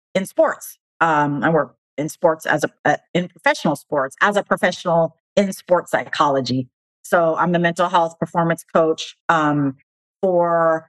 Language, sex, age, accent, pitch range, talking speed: English, female, 40-59, American, 150-175 Hz, 155 wpm